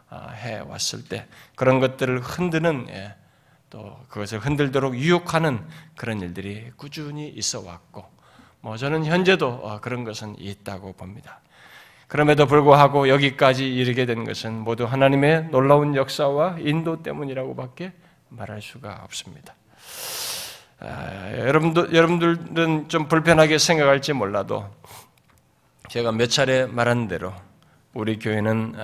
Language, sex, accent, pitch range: Korean, male, native, 110-150 Hz